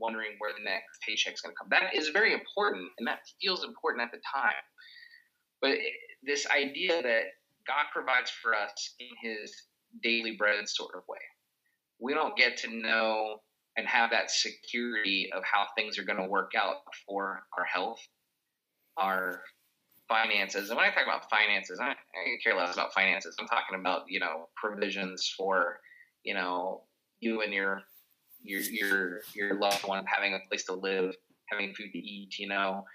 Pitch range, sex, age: 100-140 Hz, male, 20-39